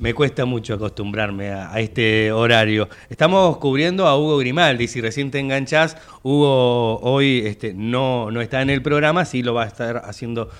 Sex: male